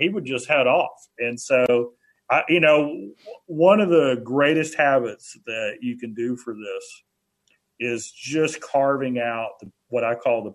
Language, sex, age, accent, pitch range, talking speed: English, male, 40-59, American, 120-150 Hz, 160 wpm